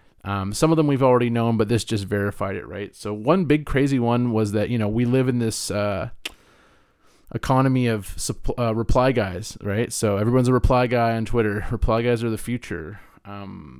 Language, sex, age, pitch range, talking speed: English, male, 30-49, 100-120 Hz, 205 wpm